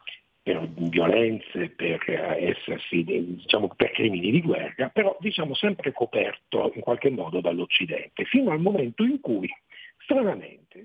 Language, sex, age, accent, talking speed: Italian, male, 50-69, native, 125 wpm